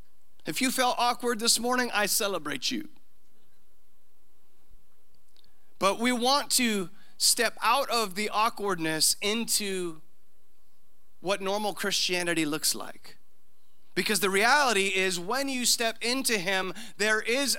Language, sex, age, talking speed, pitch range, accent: English, male, 30-49, 120 wpm, 190-235 Hz, American